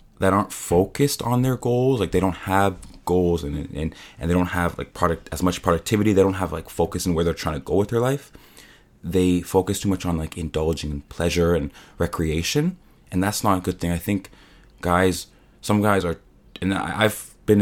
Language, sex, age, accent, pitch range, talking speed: English, male, 20-39, American, 85-100 Hz, 215 wpm